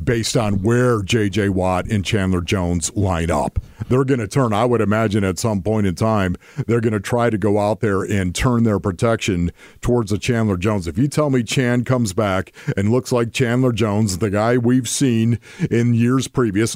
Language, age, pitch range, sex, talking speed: English, 50-69, 105-125 Hz, male, 205 wpm